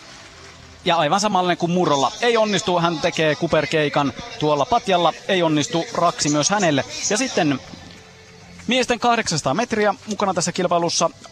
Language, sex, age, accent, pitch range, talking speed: Finnish, male, 30-49, native, 145-180 Hz, 135 wpm